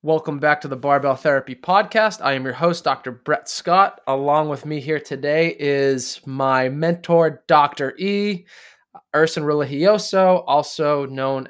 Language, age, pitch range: English, 20-39, 130-155 Hz